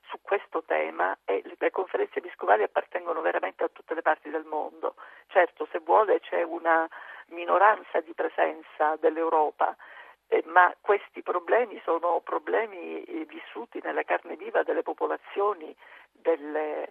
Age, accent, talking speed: 50-69, native, 130 wpm